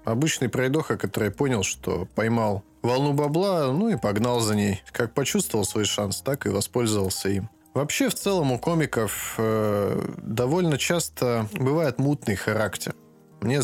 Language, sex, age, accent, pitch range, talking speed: Russian, male, 20-39, native, 105-135 Hz, 145 wpm